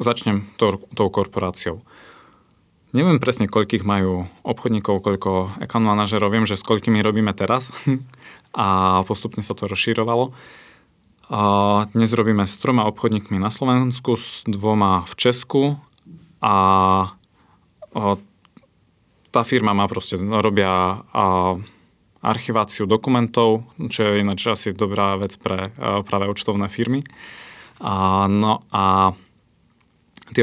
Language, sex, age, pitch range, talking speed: Slovak, male, 20-39, 95-115 Hz, 115 wpm